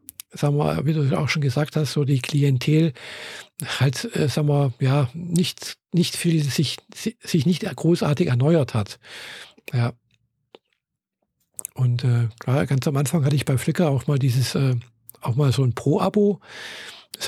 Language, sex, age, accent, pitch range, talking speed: German, male, 50-69, German, 130-170 Hz, 160 wpm